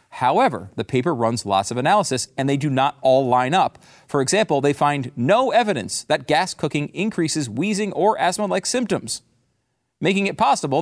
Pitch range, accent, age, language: 125-195 Hz, American, 40-59, English